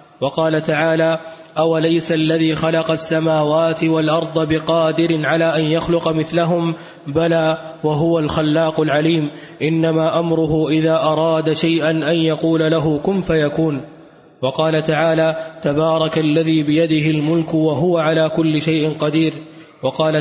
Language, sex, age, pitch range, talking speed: Arabic, male, 20-39, 155-165 Hz, 115 wpm